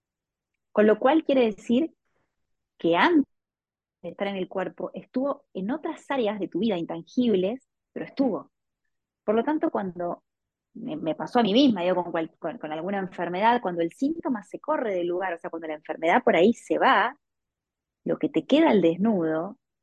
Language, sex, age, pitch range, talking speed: Spanish, female, 20-39, 180-245 Hz, 180 wpm